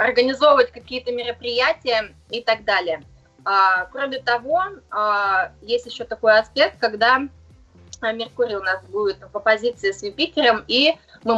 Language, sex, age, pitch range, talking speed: Russian, female, 20-39, 205-260 Hz, 130 wpm